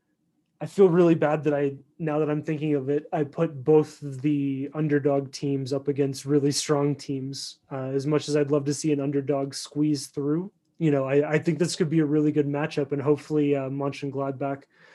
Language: English